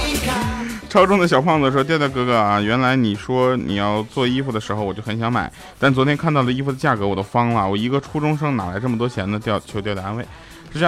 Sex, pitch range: male, 100-125 Hz